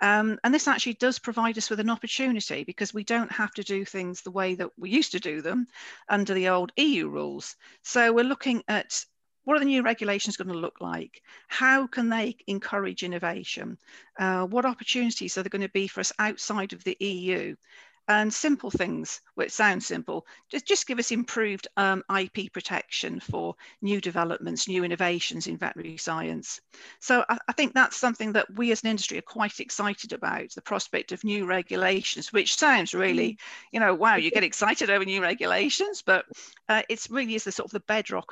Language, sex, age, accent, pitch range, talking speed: English, female, 40-59, British, 195-240 Hz, 195 wpm